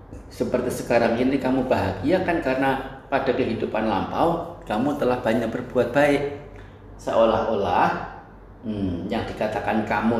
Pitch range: 100-130 Hz